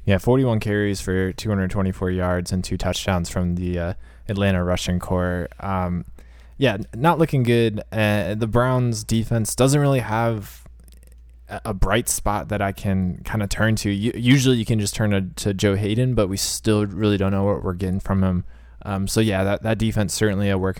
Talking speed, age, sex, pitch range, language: 195 wpm, 20-39, male, 90-105 Hz, English